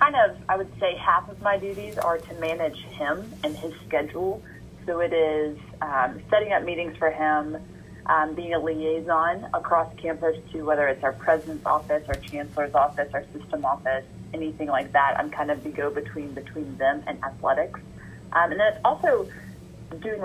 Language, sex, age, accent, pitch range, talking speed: English, female, 20-39, American, 155-180 Hz, 180 wpm